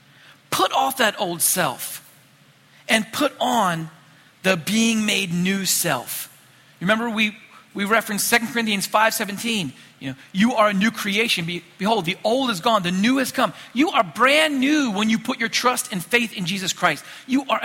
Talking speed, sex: 180 wpm, male